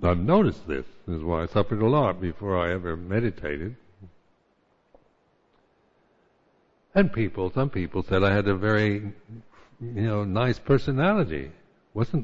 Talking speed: 135 wpm